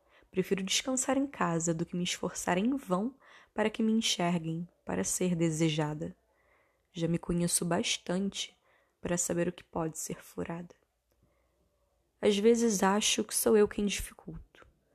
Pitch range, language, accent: 180-230 Hz, Portuguese, Brazilian